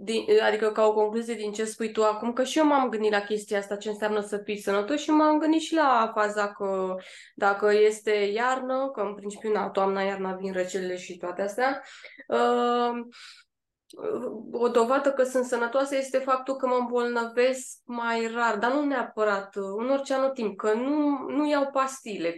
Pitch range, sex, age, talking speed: 200-245 Hz, female, 20-39, 190 wpm